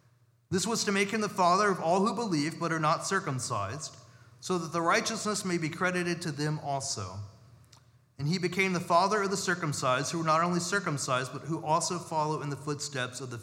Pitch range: 130-170 Hz